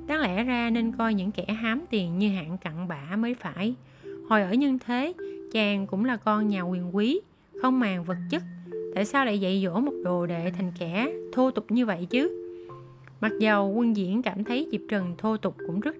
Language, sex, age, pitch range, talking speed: Vietnamese, female, 20-39, 185-240 Hz, 215 wpm